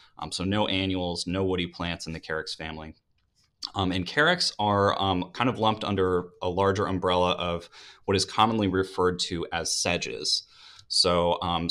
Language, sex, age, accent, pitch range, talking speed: English, male, 30-49, American, 90-105 Hz, 170 wpm